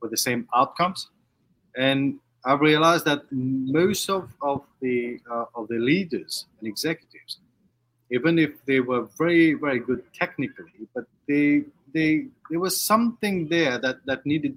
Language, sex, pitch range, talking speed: English, male, 120-145 Hz, 150 wpm